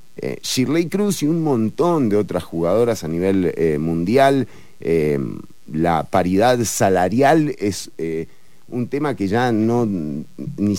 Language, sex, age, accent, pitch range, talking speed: English, male, 40-59, Argentinian, 95-135 Hz, 140 wpm